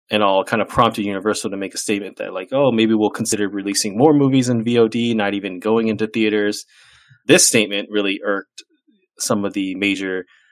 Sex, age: male, 20-39